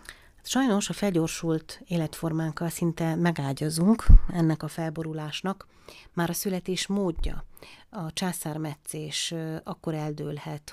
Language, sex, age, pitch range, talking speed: Hungarian, female, 30-49, 150-165 Hz, 95 wpm